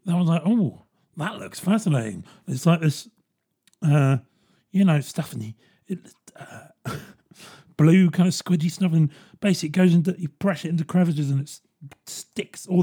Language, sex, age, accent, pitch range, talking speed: English, male, 40-59, British, 150-200 Hz, 160 wpm